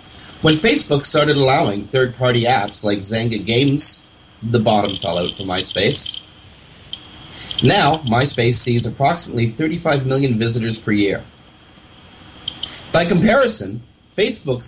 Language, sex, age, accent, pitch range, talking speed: English, male, 30-49, American, 105-155 Hz, 110 wpm